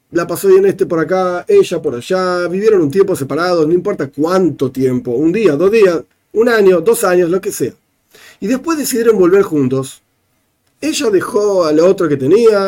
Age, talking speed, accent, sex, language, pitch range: 40-59, 190 wpm, Argentinian, male, Spanish, 155-250 Hz